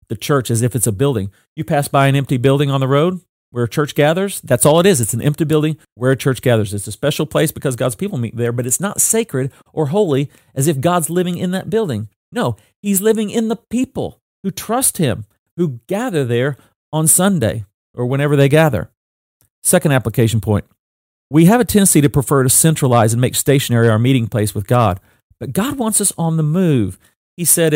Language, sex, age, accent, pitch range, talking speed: English, male, 40-59, American, 120-165 Hz, 215 wpm